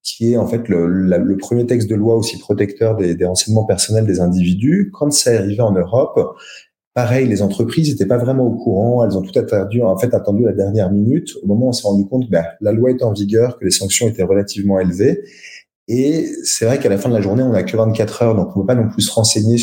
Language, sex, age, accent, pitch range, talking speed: French, male, 30-49, French, 95-120 Hz, 260 wpm